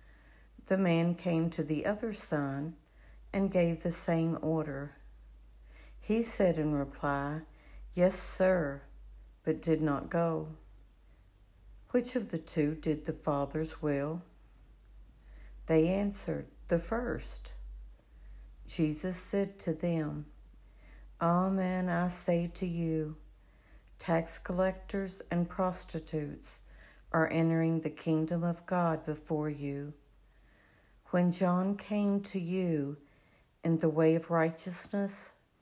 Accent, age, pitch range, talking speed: American, 60-79, 150-180 Hz, 110 wpm